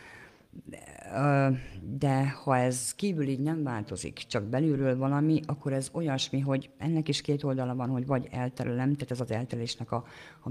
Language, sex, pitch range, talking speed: Hungarian, female, 110-140 Hz, 165 wpm